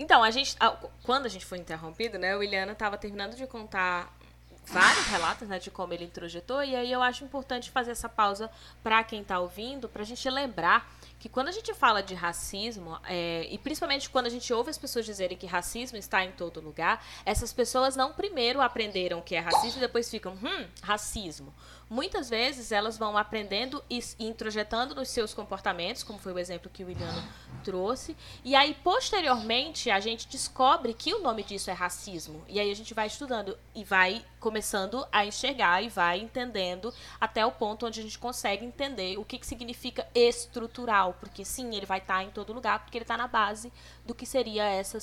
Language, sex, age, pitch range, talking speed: Portuguese, female, 10-29, 195-245 Hz, 195 wpm